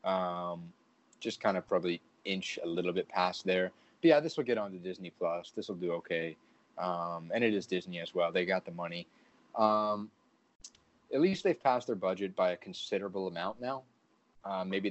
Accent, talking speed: American, 195 wpm